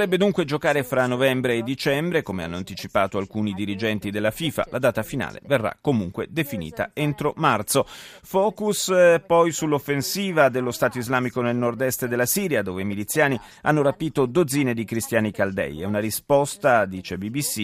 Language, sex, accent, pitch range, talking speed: Italian, male, native, 105-140 Hz, 155 wpm